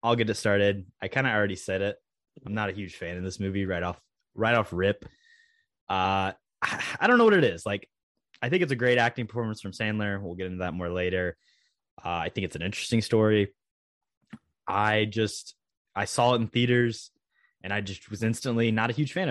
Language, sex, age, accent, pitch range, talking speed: English, male, 20-39, American, 95-120 Hz, 220 wpm